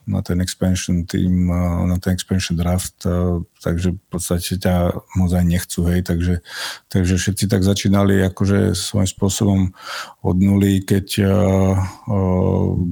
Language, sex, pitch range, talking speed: Slovak, male, 90-95 Hz, 135 wpm